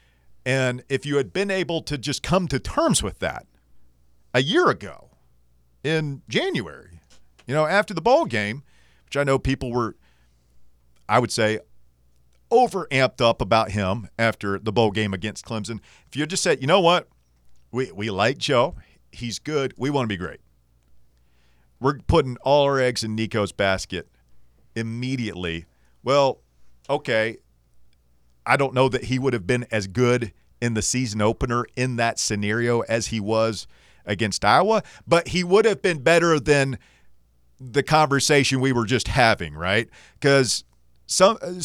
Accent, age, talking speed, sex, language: American, 40-59, 160 wpm, male, English